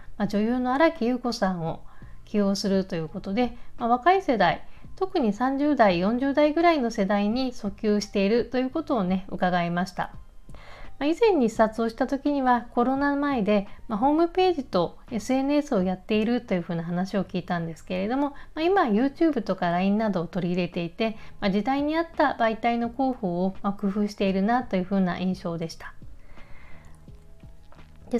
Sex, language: female, Japanese